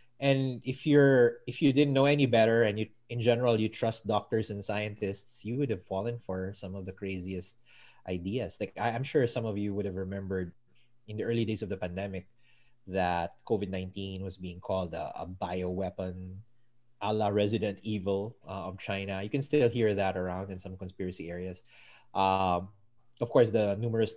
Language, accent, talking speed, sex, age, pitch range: English, Filipino, 190 wpm, male, 20-39, 95-120 Hz